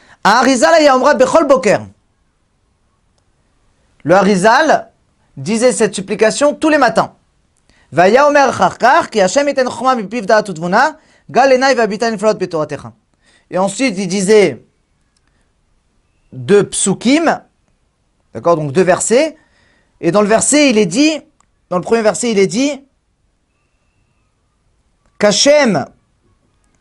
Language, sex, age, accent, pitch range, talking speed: French, male, 40-59, French, 170-260 Hz, 75 wpm